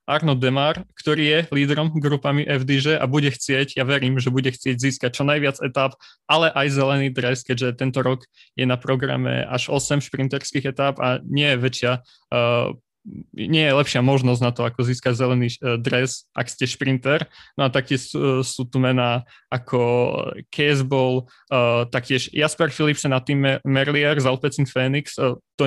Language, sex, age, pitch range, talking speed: Slovak, male, 20-39, 125-140 Hz, 160 wpm